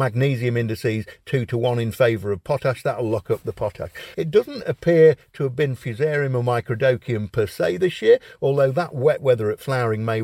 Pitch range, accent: 110-155 Hz, British